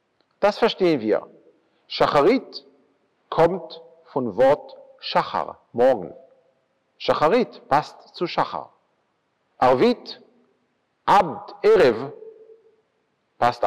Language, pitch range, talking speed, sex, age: German, 135-205 Hz, 75 wpm, male, 50-69